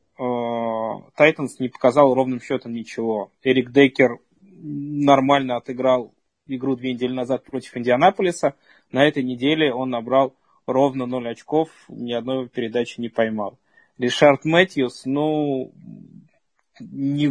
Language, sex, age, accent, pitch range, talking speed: Russian, male, 20-39, native, 125-140 Hz, 115 wpm